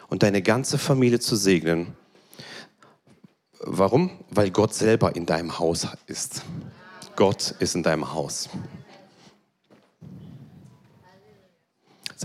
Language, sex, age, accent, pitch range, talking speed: German, male, 40-59, German, 115-160 Hz, 100 wpm